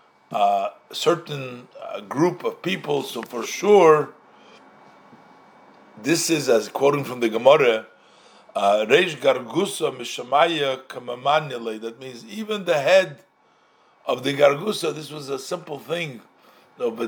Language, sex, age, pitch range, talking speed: English, male, 50-69, 135-200 Hz, 110 wpm